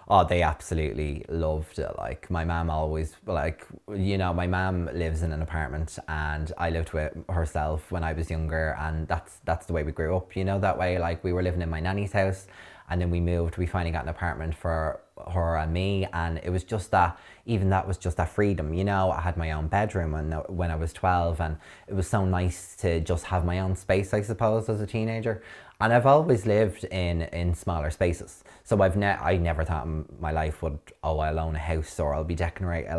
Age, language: 20-39, English